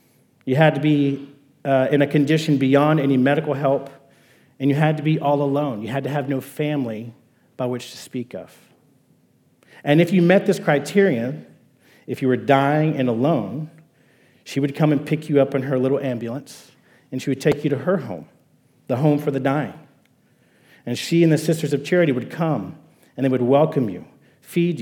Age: 40-59